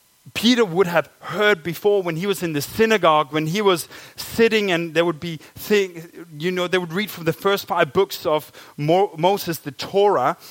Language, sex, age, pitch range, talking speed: Danish, male, 30-49, 170-225 Hz, 200 wpm